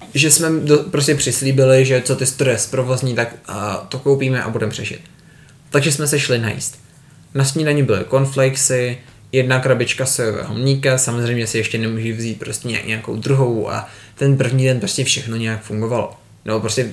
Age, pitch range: 20-39, 115-145 Hz